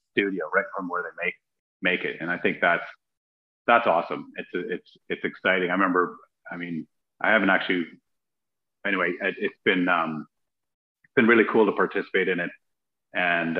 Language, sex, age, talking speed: English, male, 30-49, 175 wpm